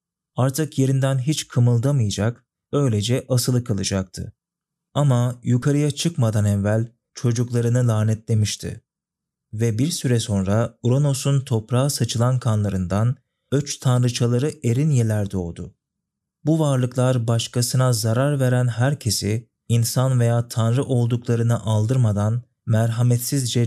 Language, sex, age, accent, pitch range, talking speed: Turkish, male, 40-59, native, 110-130 Hz, 95 wpm